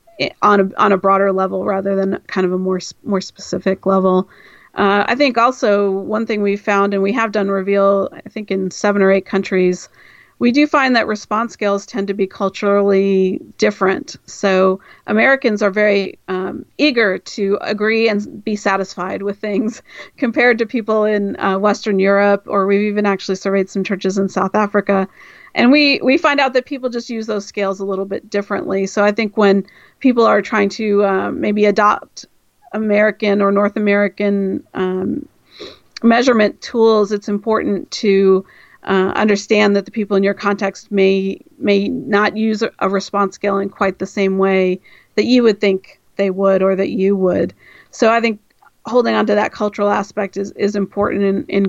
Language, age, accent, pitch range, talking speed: English, 40-59, American, 195-215 Hz, 180 wpm